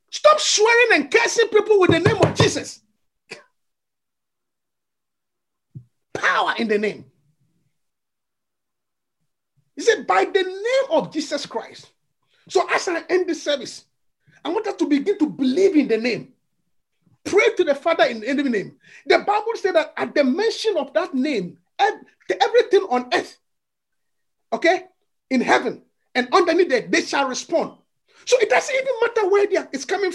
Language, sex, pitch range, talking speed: English, male, 305-415 Hz, 150 wpm